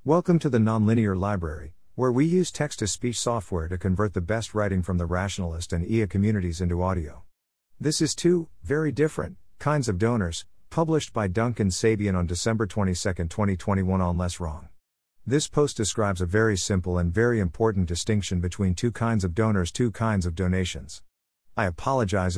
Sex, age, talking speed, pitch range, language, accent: male, 50-69, 170 wpm, 90-120 Hz, English, American